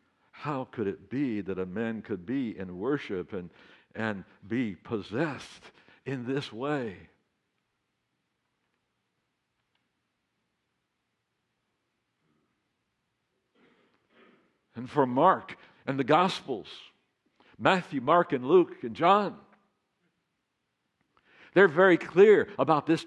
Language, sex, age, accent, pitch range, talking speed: English, male, 60-79, American, 145-195 Hz, 90 wpm